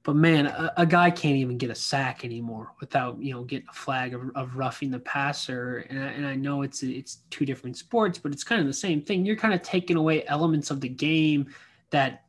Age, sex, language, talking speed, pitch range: 20-39, male, English, 240 wpm, 135-170 Hz